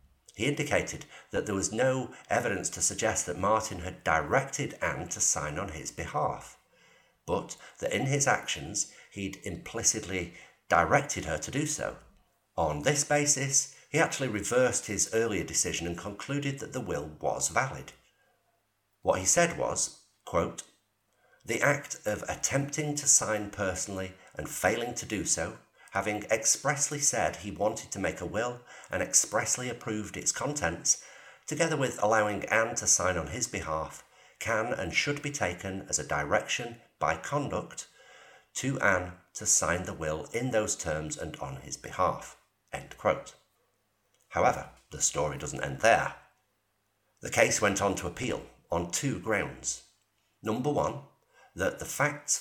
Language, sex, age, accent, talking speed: English, male, 50-69, British, 150 wpm